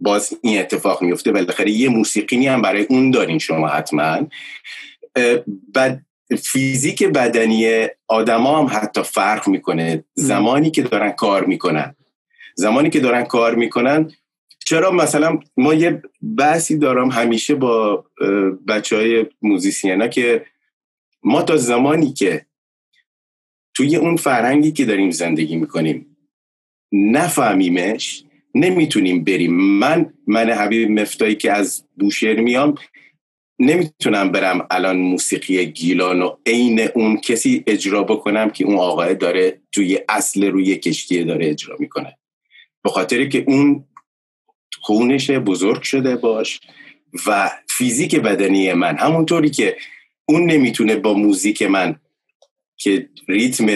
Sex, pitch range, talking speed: male, 100-145 Hz, 115 wpm